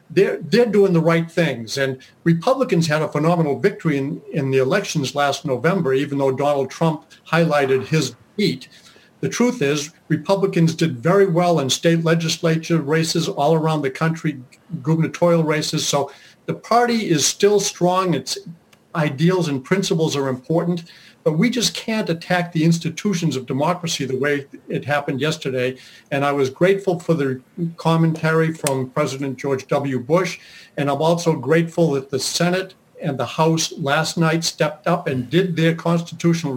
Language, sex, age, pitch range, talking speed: English, male, 60-79, 140-175 Hz, 160 wpm